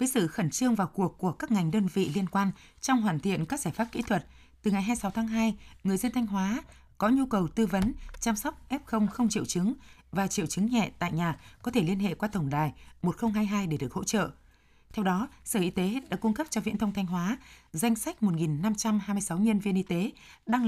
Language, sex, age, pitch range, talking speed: Vietnamese, female, 20-39, 180-225 Hz, 230 wpm